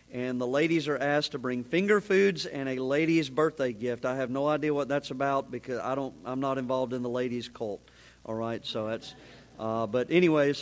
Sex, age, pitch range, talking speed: male, 40-59, 130-150 Hz, 215 wpm